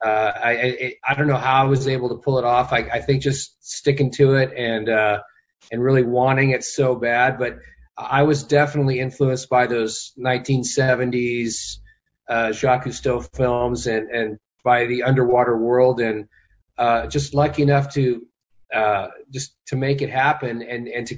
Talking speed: 175 wpm